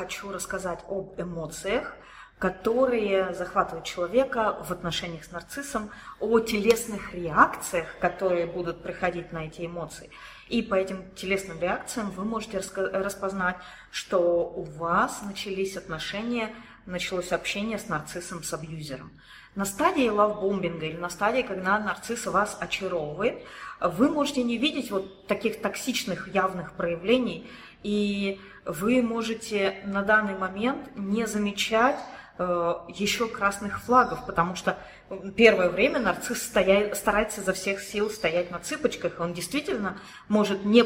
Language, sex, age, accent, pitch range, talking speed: Russian, female, 30-49, native, 180-225 Hz, 125 wpm